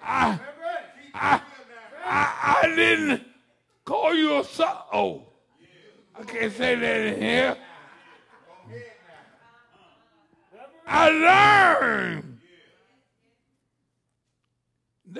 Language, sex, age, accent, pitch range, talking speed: English, male, 60-79, American, 255-335 Hz, 65 wpm